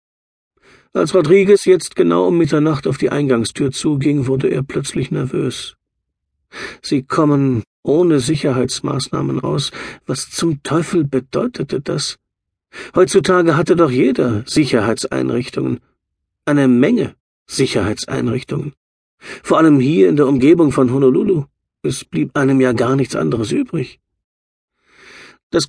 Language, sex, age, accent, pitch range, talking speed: German, male, 50-69, German, 100-145 Hz, 115 wpm